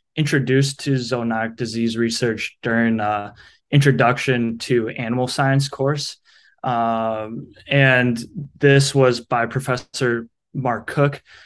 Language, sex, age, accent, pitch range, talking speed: English, male, 20-39, American, 115-135 Hz, 105 wpm